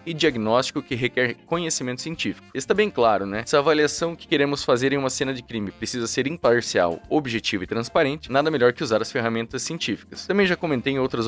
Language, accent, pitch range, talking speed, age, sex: Portuguese, Brazilian, 115-150 Hz, 205 wpm, 20-39, male